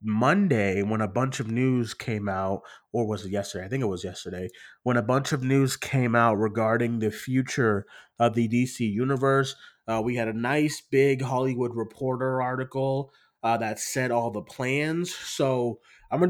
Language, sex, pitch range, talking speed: English, male, 110-135 Hz, 180 wpm